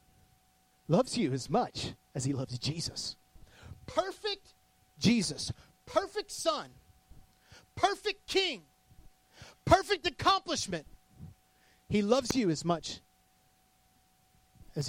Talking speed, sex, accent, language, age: 90 wpm, male, American, English, 30-49